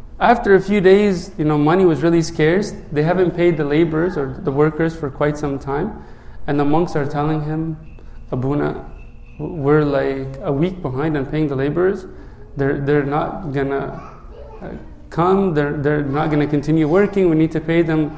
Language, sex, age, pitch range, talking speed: English, male, 30-49, 145-175 Hz, 180 wpm